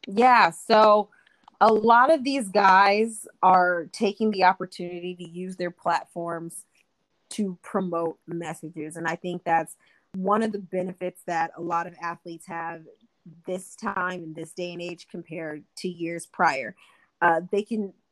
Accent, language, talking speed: American, English, 150 wpm